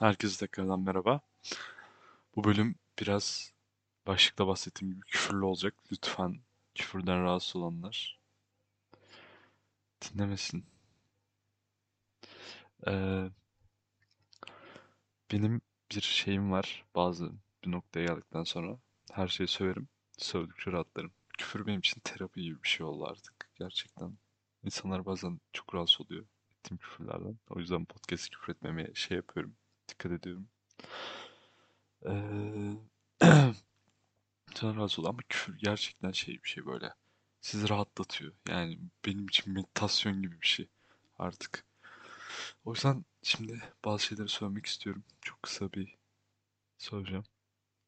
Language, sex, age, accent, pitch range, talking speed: Turkish, male, 20-39, native, 95-105 Hz, 110 wpm